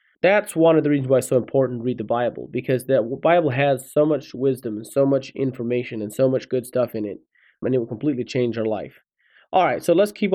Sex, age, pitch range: male, 30-49, 125-160 Hz